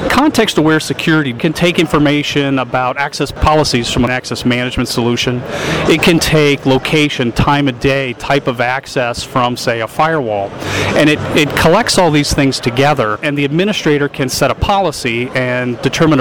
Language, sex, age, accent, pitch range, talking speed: English, male, 40-59, American, 130-160 Hz, 165 wpm